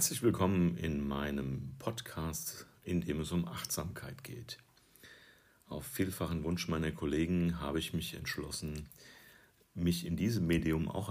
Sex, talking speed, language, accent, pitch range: male, 135 wpm, German, German, 80-105 Hz